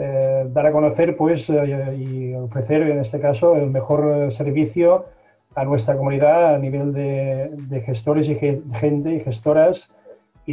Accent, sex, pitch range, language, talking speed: Spanish, male, 135-155 Hz, Spanish, 165 wpm